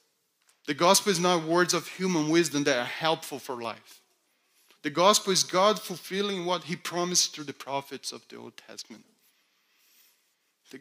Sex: male